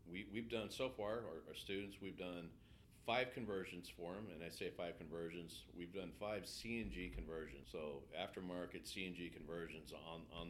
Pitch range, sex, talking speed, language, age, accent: 80-95 Hz, male, 170 wpm, English, 40-59, American